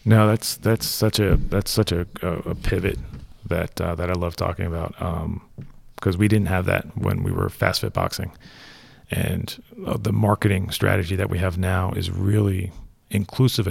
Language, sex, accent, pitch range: English, male, American, 90-110 Hz